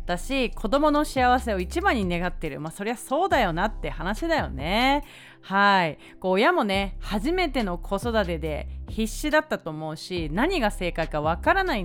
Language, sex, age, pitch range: Japanese, female, 30-49, 185-290 Hz